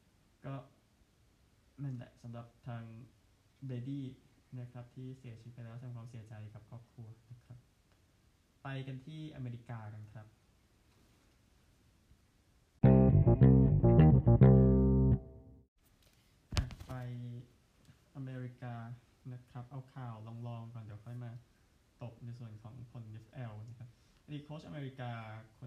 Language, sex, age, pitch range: Thai, male, 20-39, 110-125 Hz